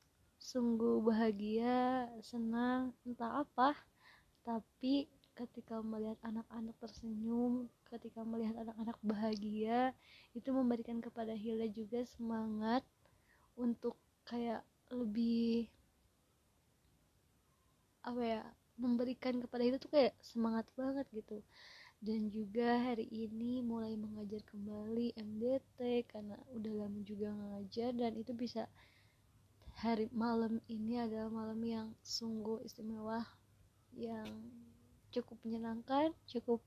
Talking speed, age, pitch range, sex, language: 115 wpm, 20-39, 220-240 Hz, female, Malayalam